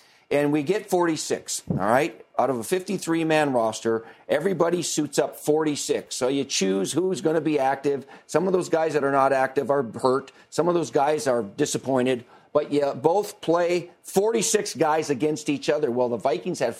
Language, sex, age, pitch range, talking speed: English, male, 50-69, 120-155 Hz, 185 wpm